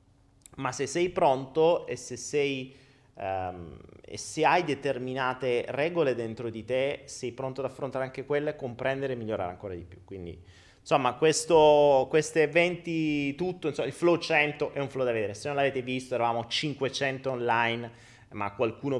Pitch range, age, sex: 105-135 Hz, 30-49, male